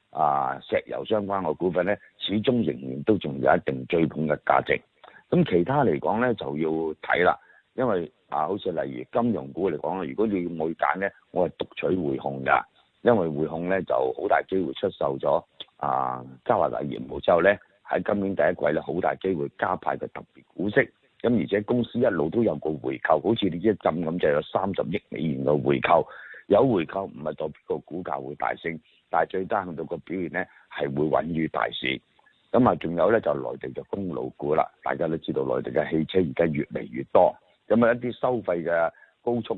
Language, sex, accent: Chinese, male, native